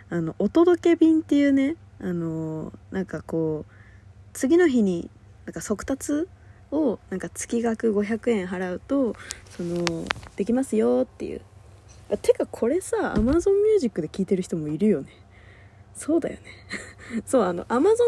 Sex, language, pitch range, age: female, Japanese, 165-245 Hz, 20-39